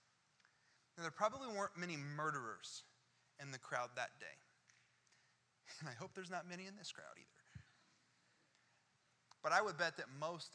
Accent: American